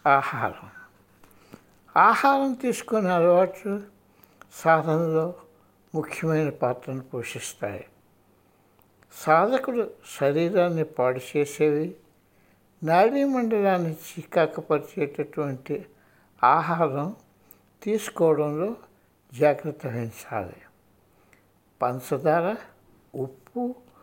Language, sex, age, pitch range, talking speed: Telugu, male, 60-79, 130-185 Hz, 55 wpm